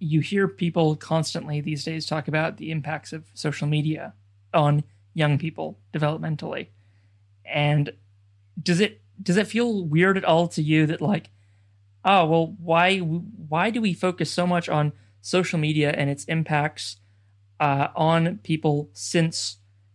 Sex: male